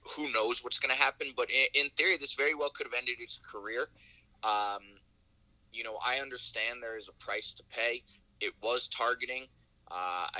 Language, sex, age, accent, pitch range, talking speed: English, male, 20-39, American, 110-150 Hz, 190 wpm